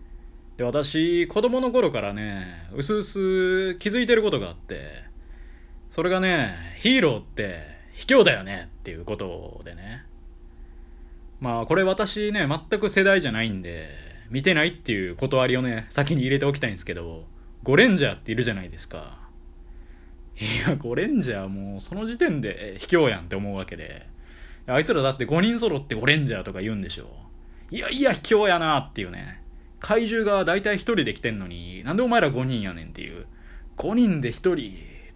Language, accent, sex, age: Japanese, native, male, 20-39